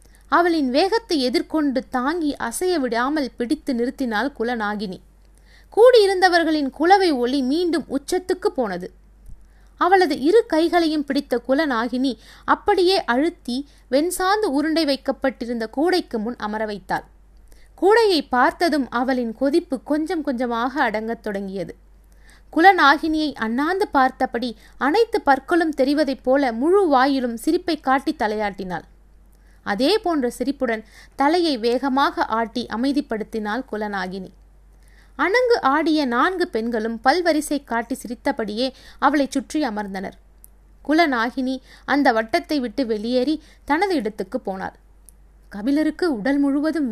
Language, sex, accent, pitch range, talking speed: Tamil, female, native, 240-325 Hz, 95 wpm